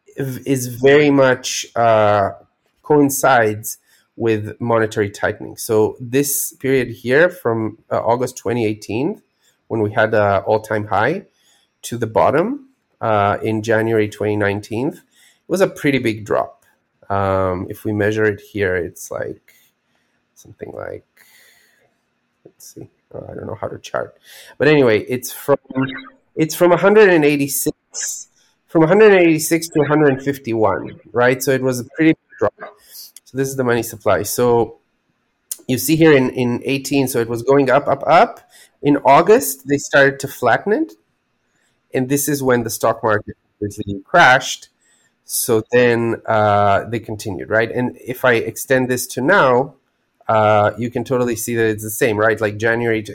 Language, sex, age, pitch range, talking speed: English, male, 30-49, 110-140 Hz, 150 wpm